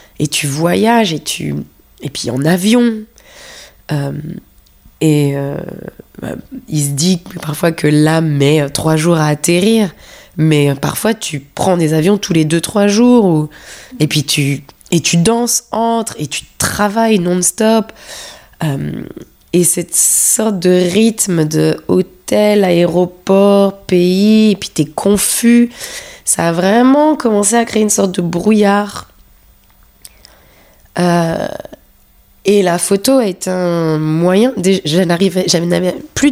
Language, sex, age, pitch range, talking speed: French, female, 20-39, 165-220 Hz, 140 wpm